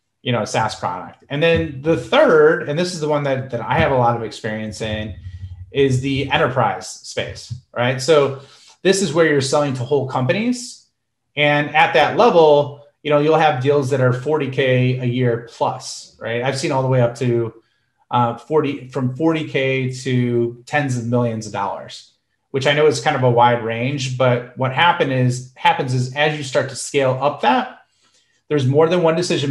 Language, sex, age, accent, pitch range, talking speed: English, male, 30-49, American, 120-145 Hz, 195 wpm